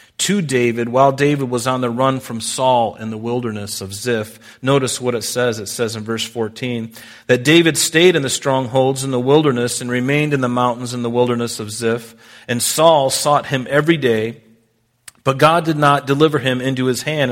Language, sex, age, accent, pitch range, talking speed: English, male, 40-59, American, 115-145 Hz, 200 wpm